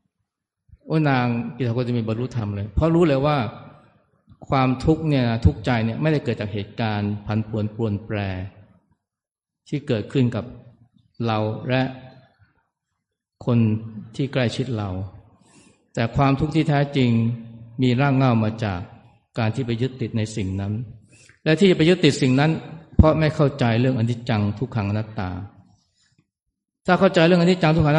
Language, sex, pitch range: Thai, male, 110-140 Hz